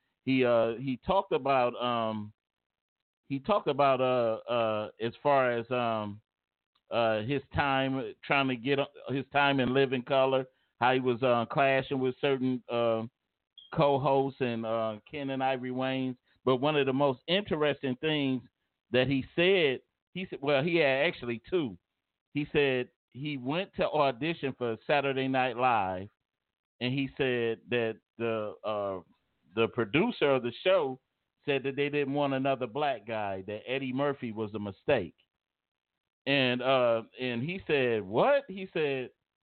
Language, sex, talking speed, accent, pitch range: English, male, 155 wpm, American, 115-145 Hz